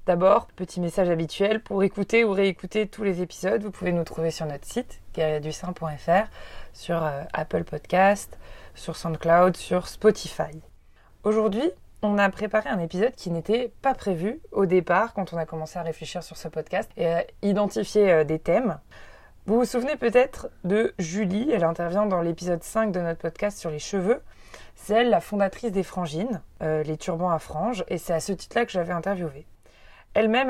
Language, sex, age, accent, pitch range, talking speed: French, female, 20-39, French, 165-205 Hz, 180 wpm